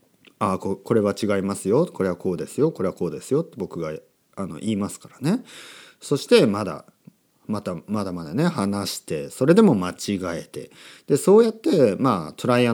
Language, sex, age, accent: Japanese, male, 40-59, native